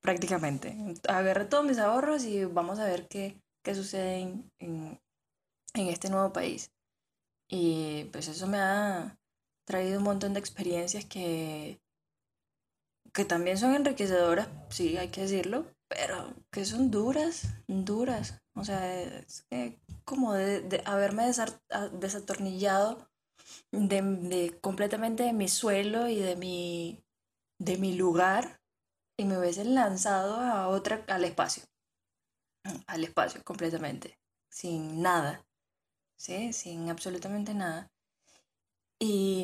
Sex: female